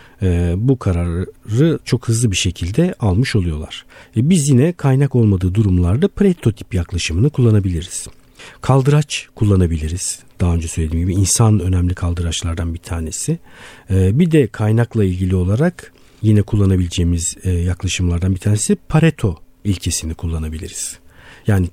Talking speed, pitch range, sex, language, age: 115 wpm, 90-120 Hz, male, Turkish, 50-69